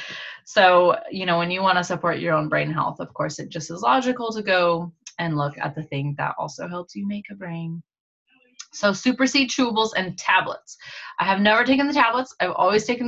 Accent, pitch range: American, 165-220 Hz